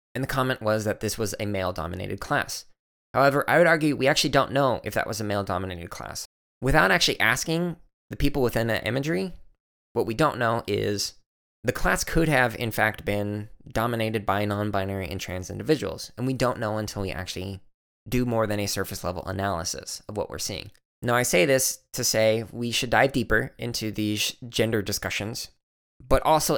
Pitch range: 100-135 Hz